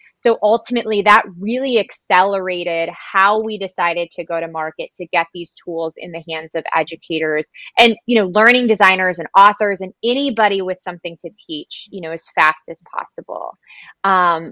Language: English